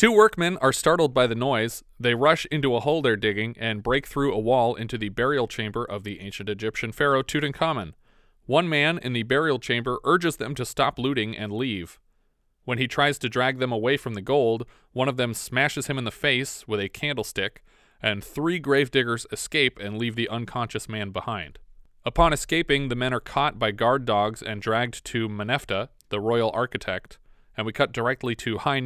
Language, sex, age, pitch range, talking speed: English, male, 30-49, 110-135 Hz, 200 wpm